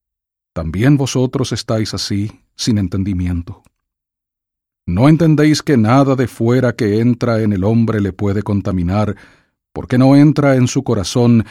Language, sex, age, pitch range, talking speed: English, male, 50-69, 95-120 Hz, 135 wpm